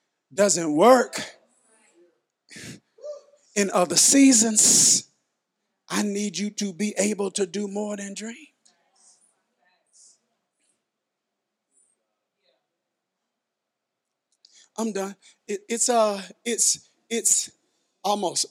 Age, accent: 50-69, American